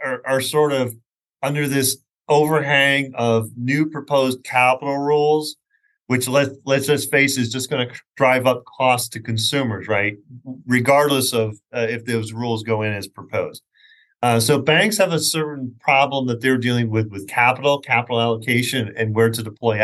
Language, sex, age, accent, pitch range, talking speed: English, male, 40-59, American, 120-150 Hz, 170 wpm